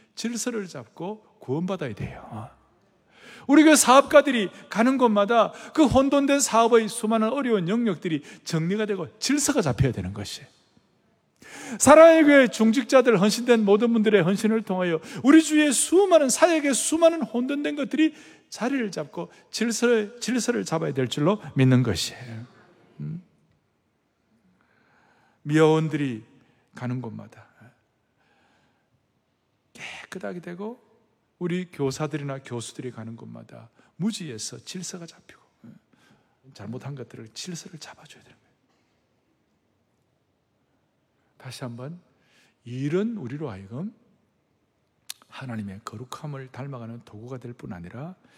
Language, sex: Korean, male